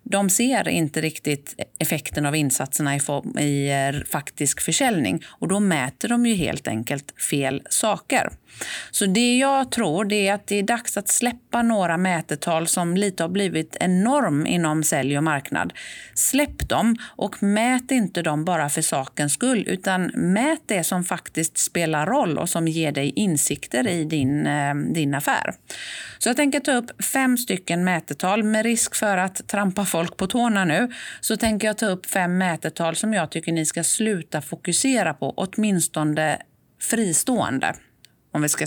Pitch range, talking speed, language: 150-220 Hz, 160 wpm, Swedish